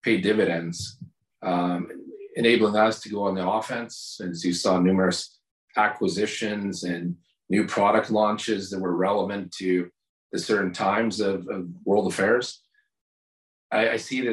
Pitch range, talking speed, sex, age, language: 90-105 Hz, 140 wpm, male, 30-49, English